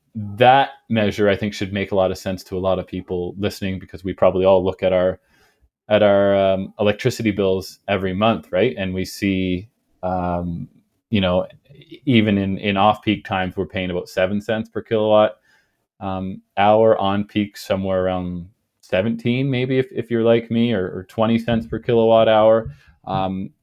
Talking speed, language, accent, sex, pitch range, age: 180 wpm, English, American, male, 95-110 Hz, 20-39